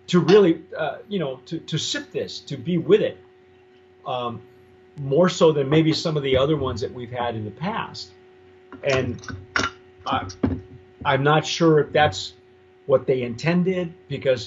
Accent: American